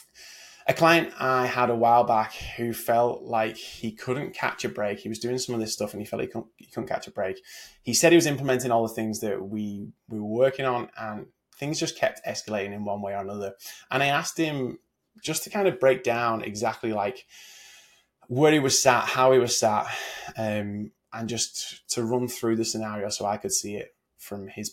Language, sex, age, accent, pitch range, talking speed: English, male, 20-39, British, 110-135 Hz, 220 wpm